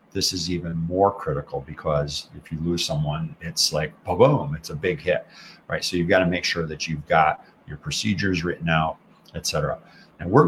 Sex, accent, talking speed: male, American, 195 wpm